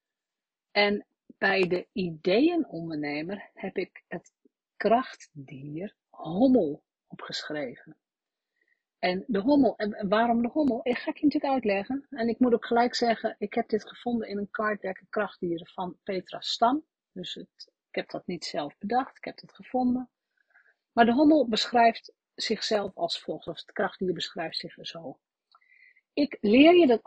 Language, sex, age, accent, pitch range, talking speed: Dutch, female, 50-69, Dutch, 185-255 Hz, 155 wpm